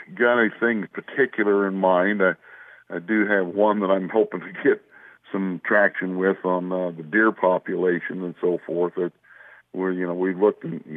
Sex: male